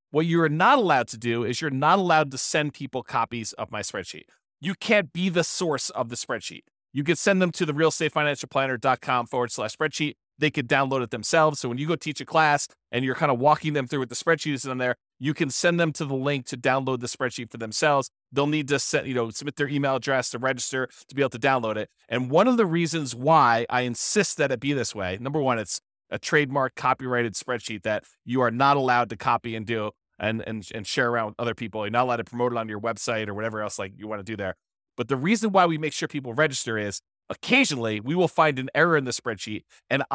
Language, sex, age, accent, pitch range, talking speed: English, male, 30-49, American, 120-150 Hz, 250 wpm